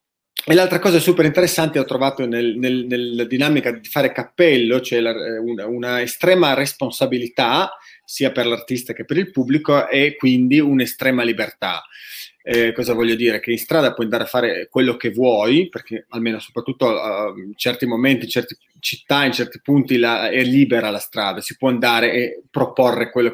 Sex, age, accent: male, 30-49, native